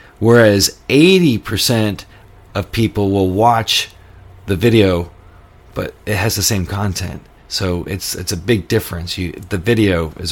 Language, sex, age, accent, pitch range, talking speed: English, male, 40-59, American, 90-115 Hz, 140 wpm